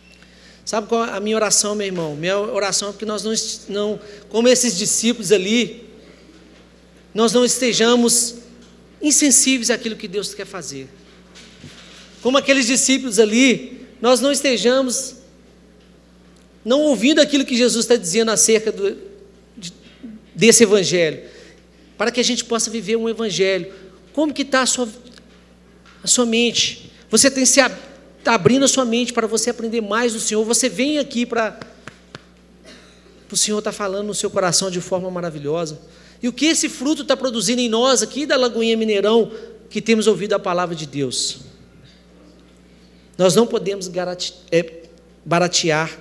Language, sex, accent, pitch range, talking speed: Portuguese, male, Brazilian, 160-235 Hz, 150 wpm